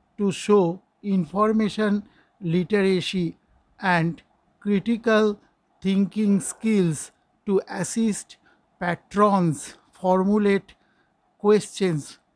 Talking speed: 65 wpm